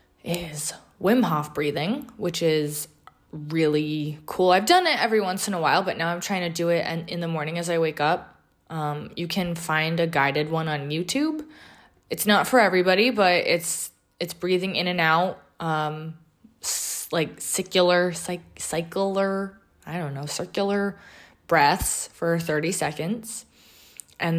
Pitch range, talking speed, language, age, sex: 155-180 Hz, 160 wpm, English, 20-39, female